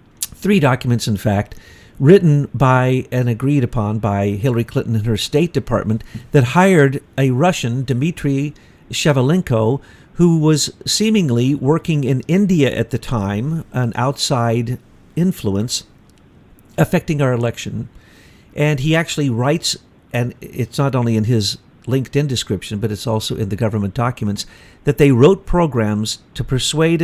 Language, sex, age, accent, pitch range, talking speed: English, male, 50-69, American, 110-145 Hz, 140 wpm